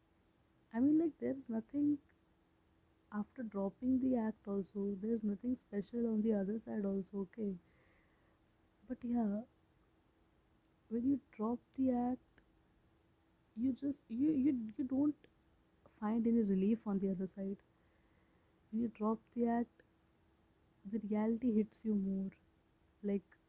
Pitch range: 200-230 Hz